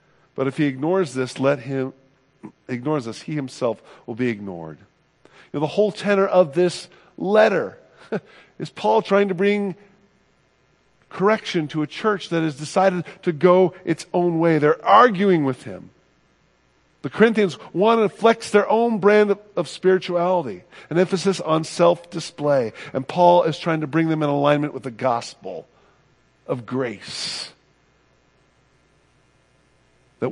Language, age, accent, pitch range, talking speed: English, 50-69, American, 120-180 Hz, 145 wpm